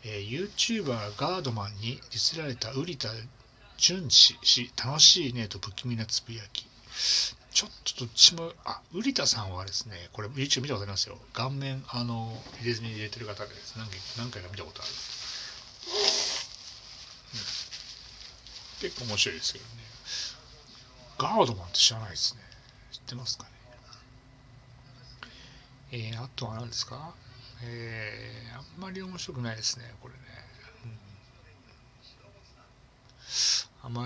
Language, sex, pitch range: Japanese, male, 110-130 Hz